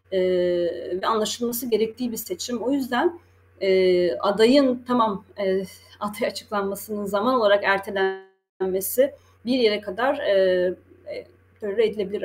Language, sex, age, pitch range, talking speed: Turkish, female, 30-49, 195-250 Hz, 115 wpm